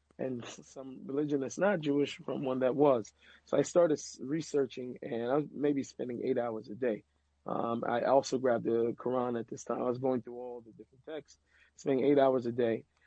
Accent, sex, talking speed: American, male, 205 wpm